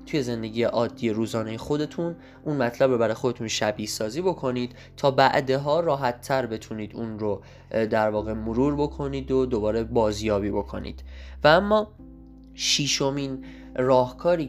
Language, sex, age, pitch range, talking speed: Persian, male, 10-29, 110-130 Hz, 135 wpm